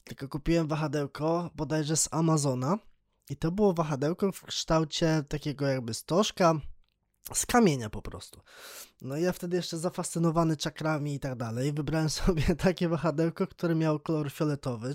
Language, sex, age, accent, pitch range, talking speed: Polish, male, 20-39, native, 140-175 Hz, 150 wpm